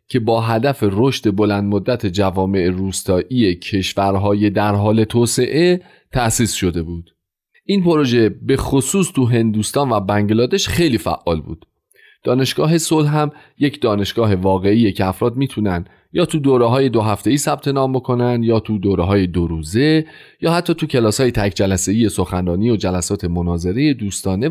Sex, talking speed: male, 150 wpm